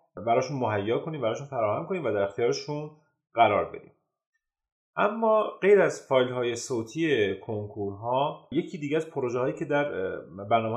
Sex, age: male, 30-49